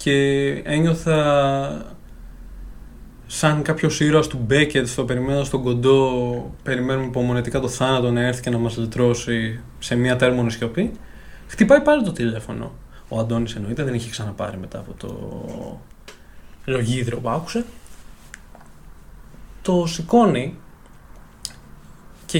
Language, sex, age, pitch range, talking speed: Greek, male, 20-39, 115-185 Hz, 120 wpm